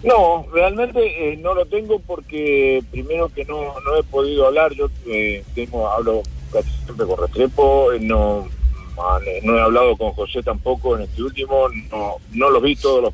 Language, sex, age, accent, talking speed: Spanish, male, 50-69, Argentinian, 180 wpm